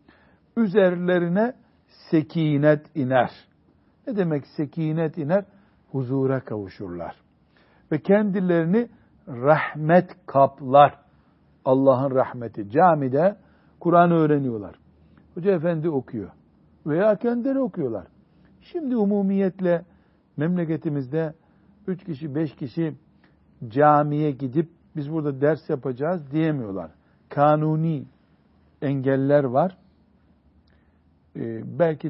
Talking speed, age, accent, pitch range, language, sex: 80 wpm, 60-79, native, 130-175 Hz, Turkish, male